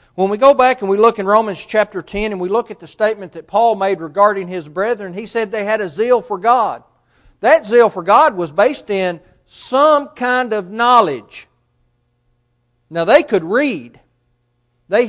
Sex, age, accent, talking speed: male, 40-59, American, 185 wpm